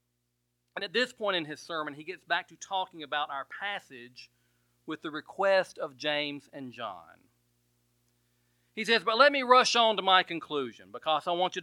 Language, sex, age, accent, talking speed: English, male, 40-59, American, 185 wpm